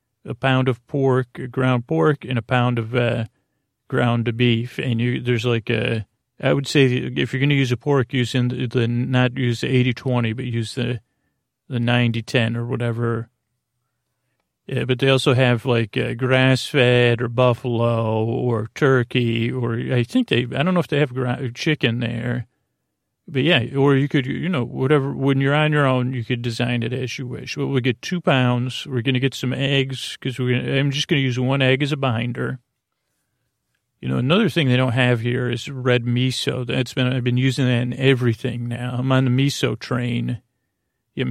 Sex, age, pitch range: male, 40-59, 120-130 Hz